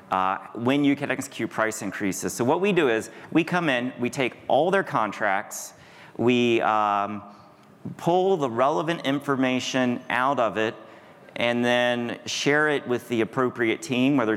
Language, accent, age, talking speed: English, American, 40-59, 160 wpm